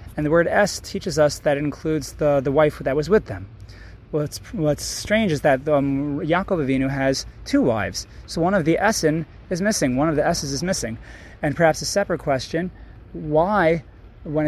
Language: English